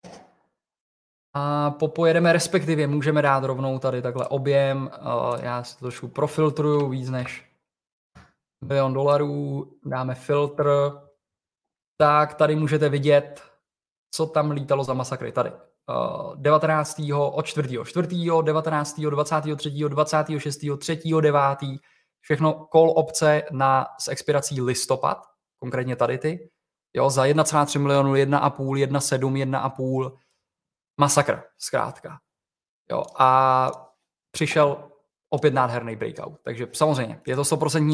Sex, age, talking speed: male, 20-39, 110 wpm